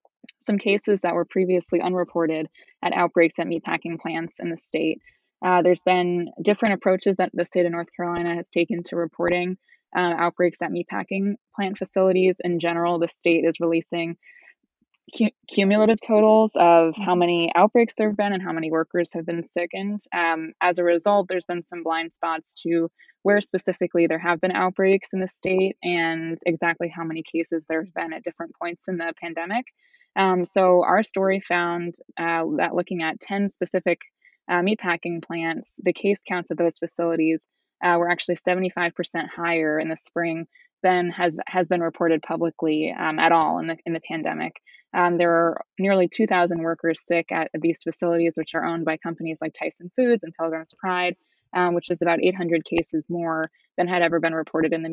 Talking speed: 180 wpm